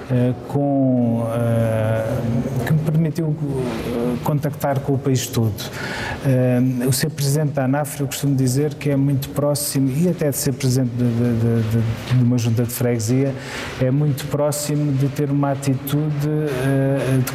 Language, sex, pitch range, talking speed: Portuguese, male, 115-135 Hz, 165 wpm